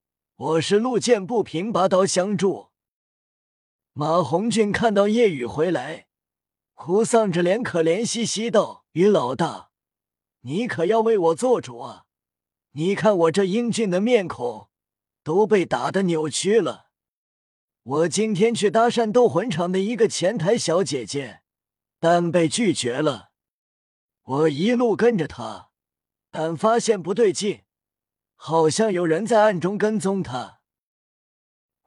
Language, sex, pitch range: Chinese, male, 155-215 Hz